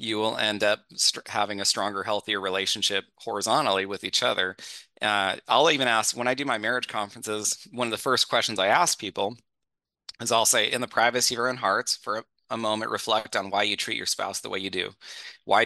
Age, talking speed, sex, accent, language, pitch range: 30-49, 220 wpm, male, American, English, 100-120 Hz